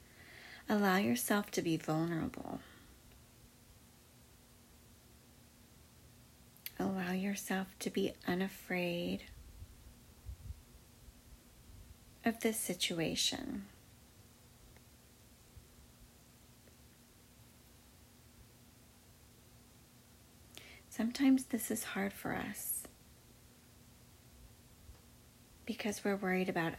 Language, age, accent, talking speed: English, 40-59, American, 50 wpm